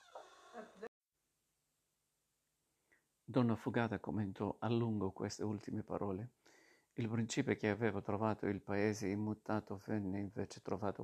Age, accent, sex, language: 50-69, native, male, Italian